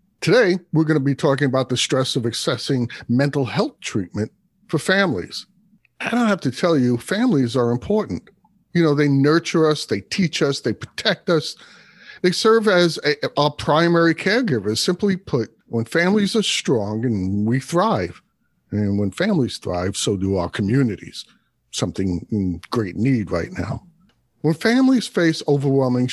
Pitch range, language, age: 115-175 Hz, English, 50-69